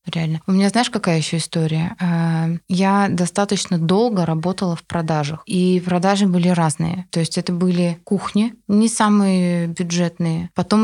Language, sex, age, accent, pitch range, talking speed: Russian, female, 20-39, native, 170-200 Hz, 145 wpm